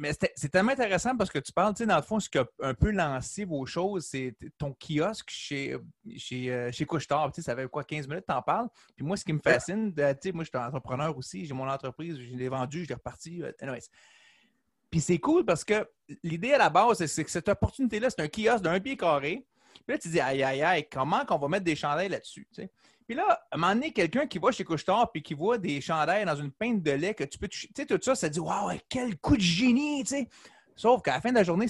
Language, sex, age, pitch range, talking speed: French, male, 30-49, 145-210 Hz, 265 wpm